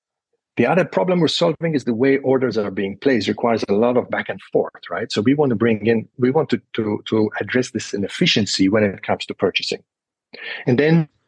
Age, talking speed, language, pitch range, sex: 40-59, 220 wpm, English, 105-135 Hz, male